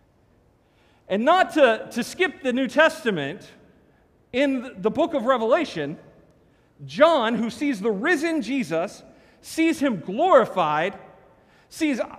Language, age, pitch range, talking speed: English, 40-59, 115-175 Hz, 115 wpm